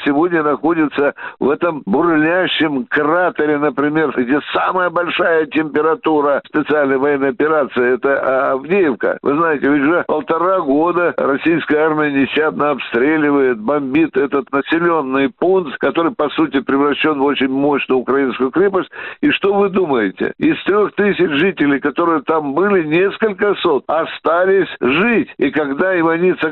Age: 60-79